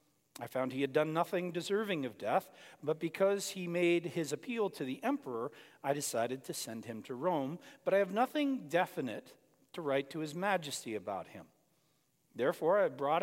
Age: 50-69